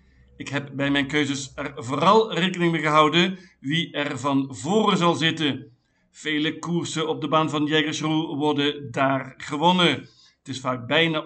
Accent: Dutch